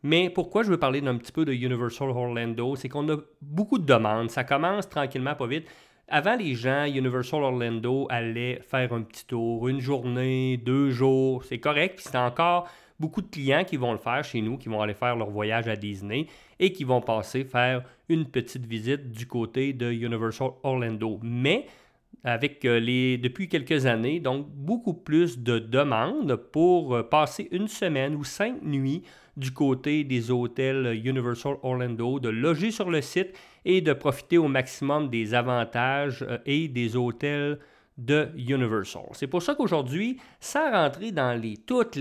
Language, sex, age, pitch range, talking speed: English, male, 40-59, 120-150 Hz, 175 wpm